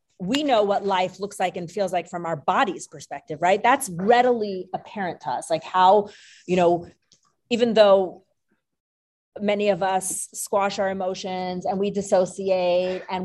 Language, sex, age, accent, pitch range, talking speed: English, female, 30-49, American, 180-235 Hz, 160 wpm